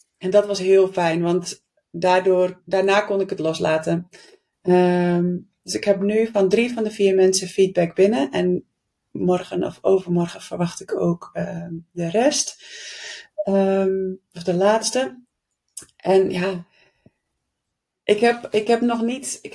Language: Dutch